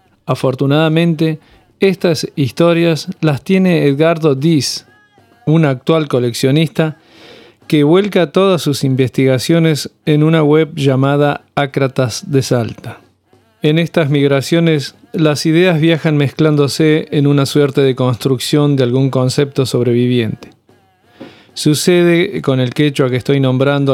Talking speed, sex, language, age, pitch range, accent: 115 wpm, male, Spanish, 40-59, 125-155 Hz, Argentinian